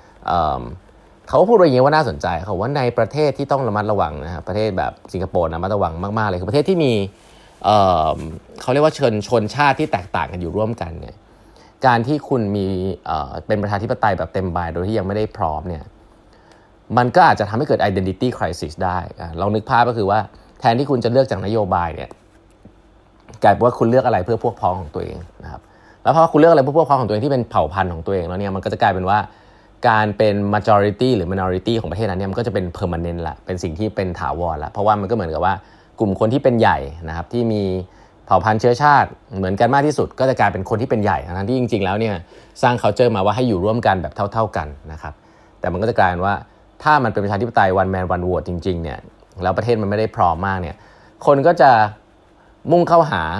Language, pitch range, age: Thai, 95-120 Hz, 20-39